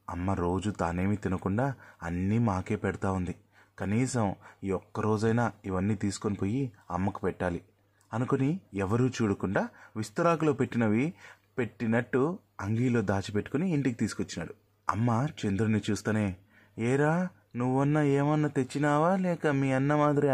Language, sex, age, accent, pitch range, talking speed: Telugu, male, 30-49, native, 100-135 Hz, 100 wpm